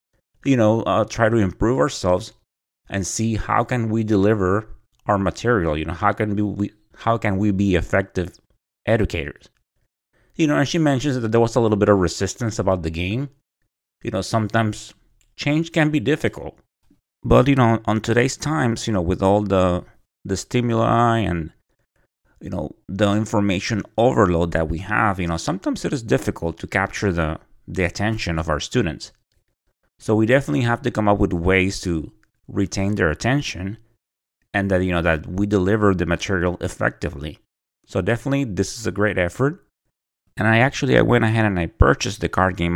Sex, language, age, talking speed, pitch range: male, English, 30-49, 180 wpm, 90-115 Hz